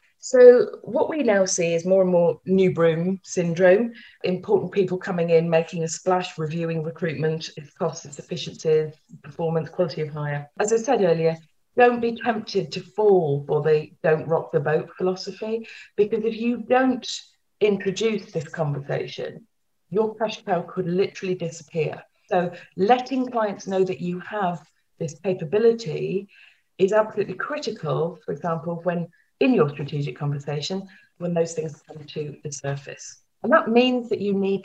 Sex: female